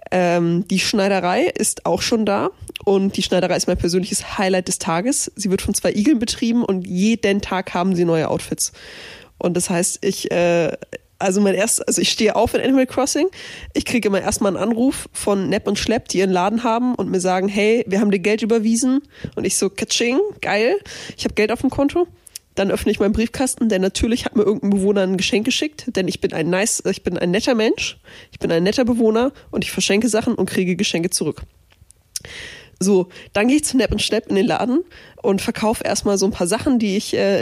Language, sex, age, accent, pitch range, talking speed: German, female, 20-39, German, 190-240 Hz, 215 wpm